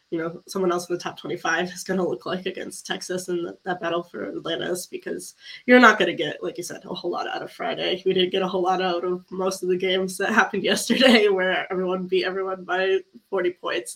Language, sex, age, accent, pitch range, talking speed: English, female, 10-29, American, 180-195 Hz, 245 wpm